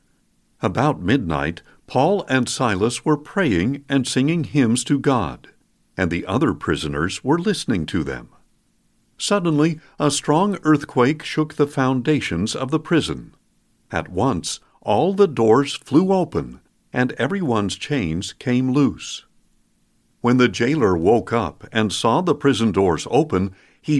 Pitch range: 115-155 Hz